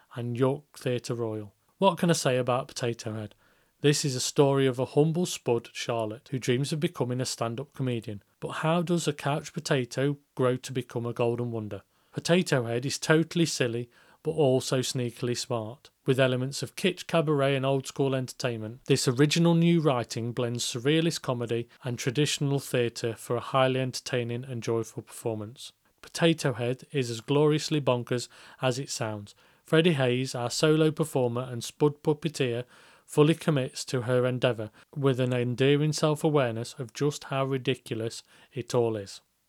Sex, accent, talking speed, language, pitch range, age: male, British, 160 wpm, English, 120-145 Hz, 30-49